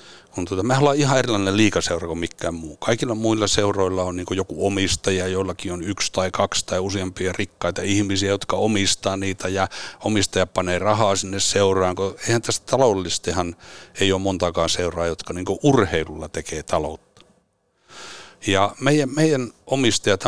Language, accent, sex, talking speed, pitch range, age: Finnish, native, male, 140 wpm, 90-115 Hz, 60-79